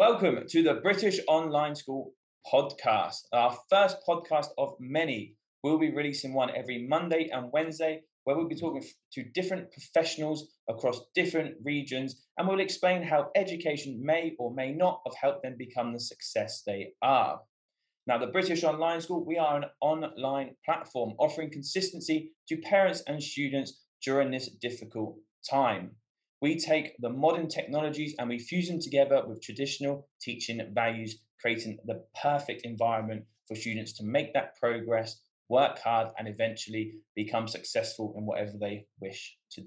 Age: 20-39